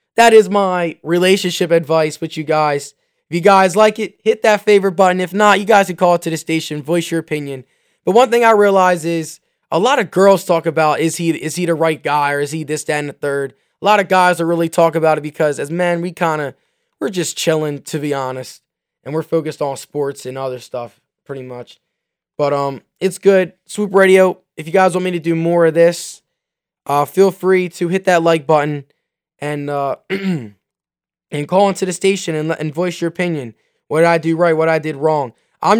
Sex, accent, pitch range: male, American, 145-180 Hz